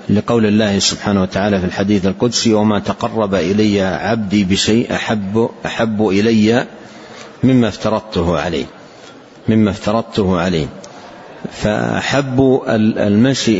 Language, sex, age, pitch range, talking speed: Arabic, male, 50-69, 100-120 Hz, 100 wpm